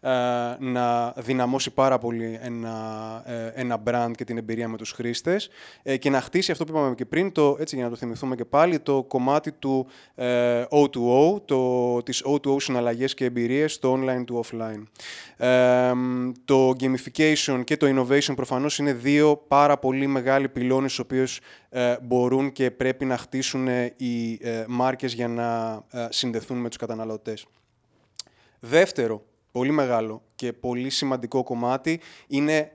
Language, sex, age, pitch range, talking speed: Greek, male, 20-39, 120-140 Hz, 150 wpm